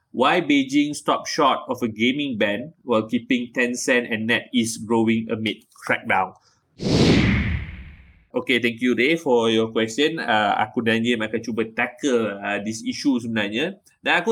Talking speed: 150 wpm